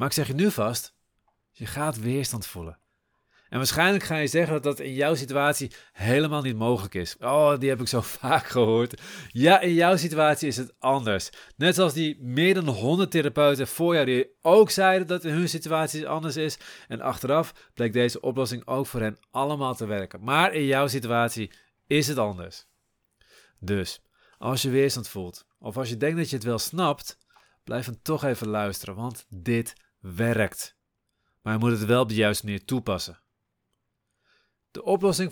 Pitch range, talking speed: 115-160 Hz, 185 wpm